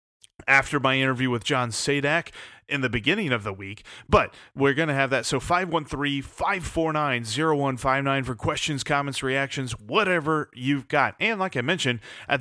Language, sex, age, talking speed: English, male, 30-49, 155 wpm